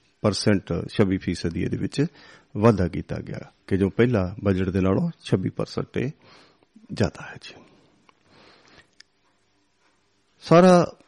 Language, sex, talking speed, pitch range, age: Punjabi, male, 105 wpm, 105-125 Hz, 40-59